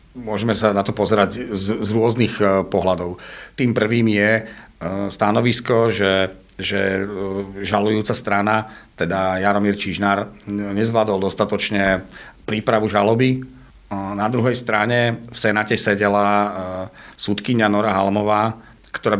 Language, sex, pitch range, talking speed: Slovak, male, 100-115 Hz, 105 wpm